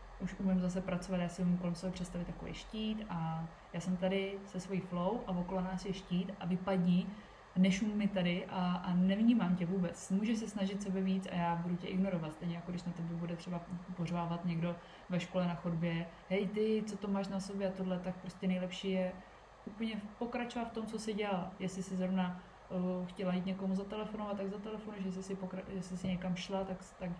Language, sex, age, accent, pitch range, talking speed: Czech, female, 20-39, native, 180-200 Hz, 210 wpm